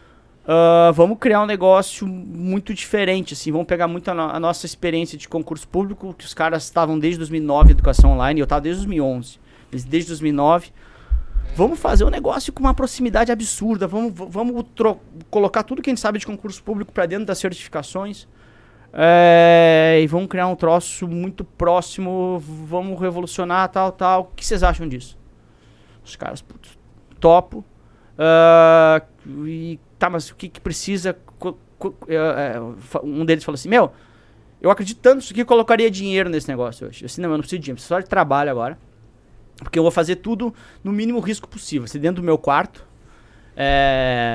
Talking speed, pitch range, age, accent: 180 wpm, 155-190 Hz, 30-49, Brazilian